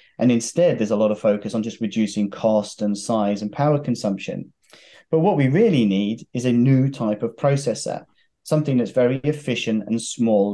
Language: English